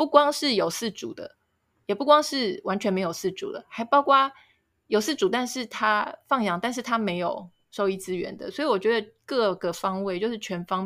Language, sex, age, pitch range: Chinese, female, 20-39, 180-230 Hz